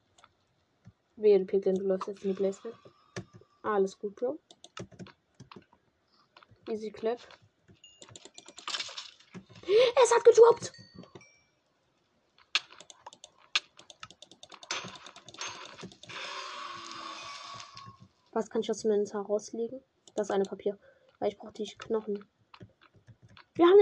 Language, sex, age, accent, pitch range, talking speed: German, female, 20-39, German, 210-315 Hz, 85 wpm